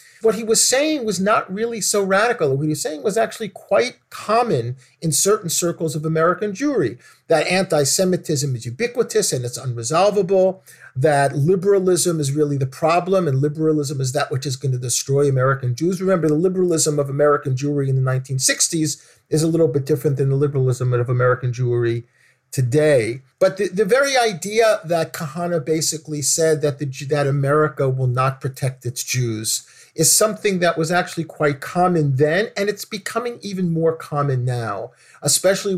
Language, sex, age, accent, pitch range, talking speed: English, male, 50-69, American, 135-180 Hz, 170 wpm